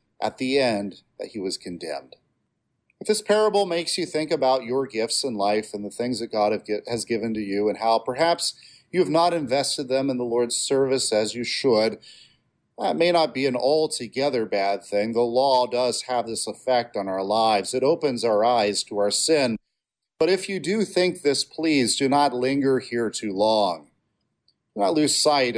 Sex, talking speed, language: male, 195 wpm, English